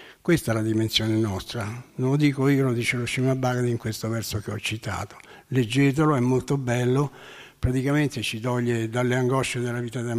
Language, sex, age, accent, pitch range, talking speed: Italian, male, 60-79, native, 115-135 Hz, 185 wpm